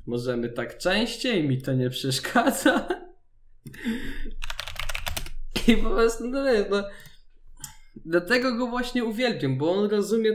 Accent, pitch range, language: native, 150-210 Hz, Polish